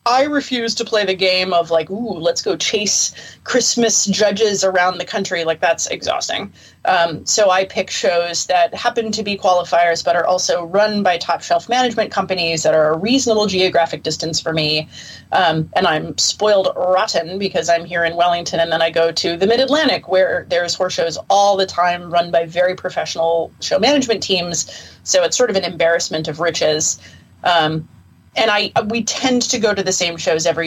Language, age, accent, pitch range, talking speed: English, 30-49, American, 170-225 Hz, 190 wpm